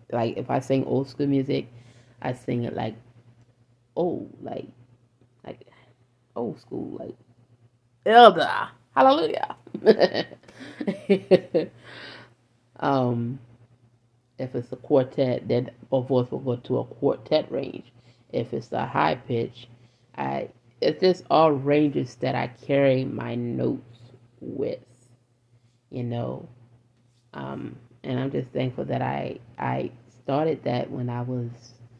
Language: English